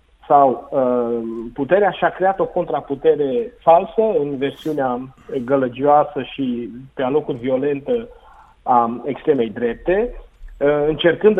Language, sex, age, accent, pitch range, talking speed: Romanian, male, 30-49, native, 135-190 Hz, 100 wpm